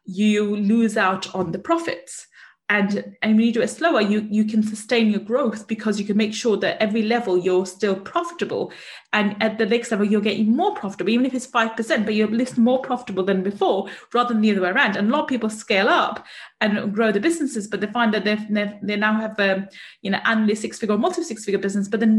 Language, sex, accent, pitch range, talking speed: English, female, British, 210-245 Hz, 245 wpm